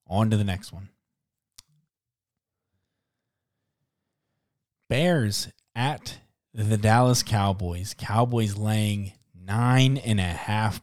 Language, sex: English, male